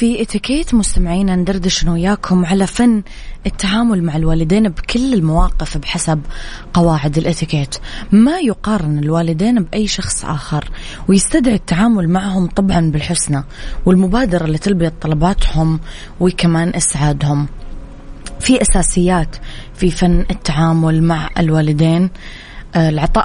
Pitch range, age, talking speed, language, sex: 160-195 Hz, 20-39, 105 wpm, Arabic, female